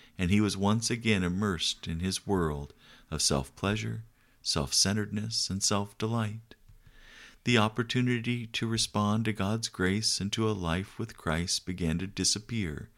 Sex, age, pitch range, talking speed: male, 50-69, 90-110 Hz, 140 wpm